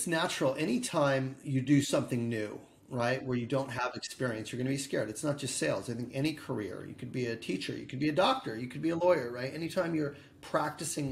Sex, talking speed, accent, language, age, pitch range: male, 230 wpm, American, English, 30-49, 125-155 Hz